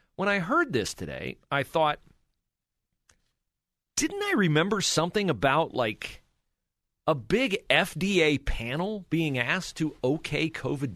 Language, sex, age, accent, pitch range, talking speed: English, male, 40-59, American, 130-190 Hz, 120 wpm